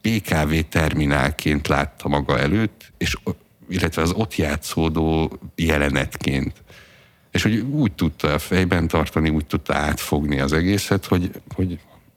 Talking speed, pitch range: 120 wpm, 75-95 Hz